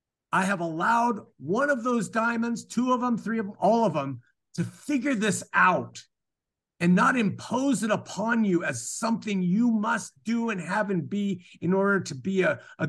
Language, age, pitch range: English, 50-69, 160-225 Hz